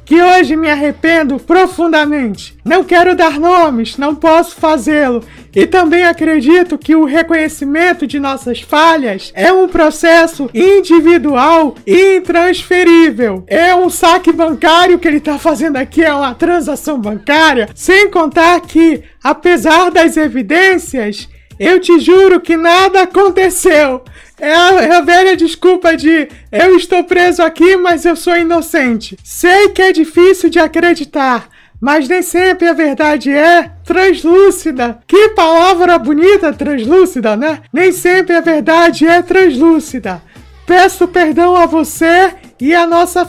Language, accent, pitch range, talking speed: Portuguese, Brazilian, 300-350 Hz, 135 wpm